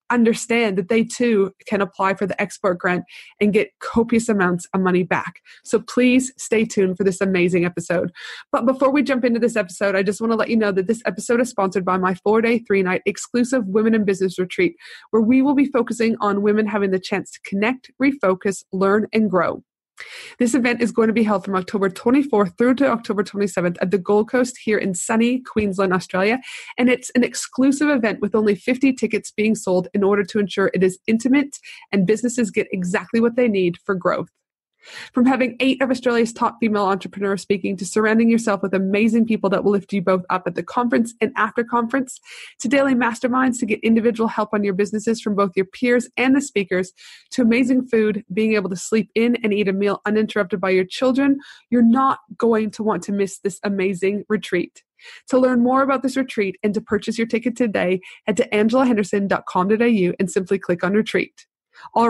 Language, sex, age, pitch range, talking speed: English, female, 20-39, 195-240 Hz, 205 wpm